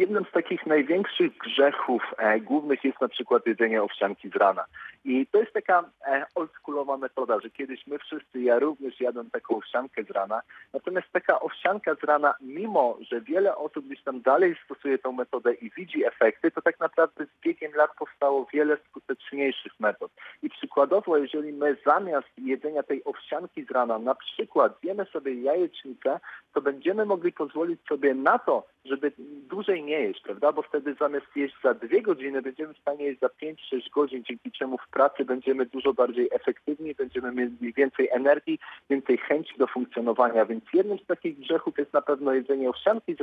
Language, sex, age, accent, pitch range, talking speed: Polish, male, 40-59, native, 135-175 Hz, 180 wpm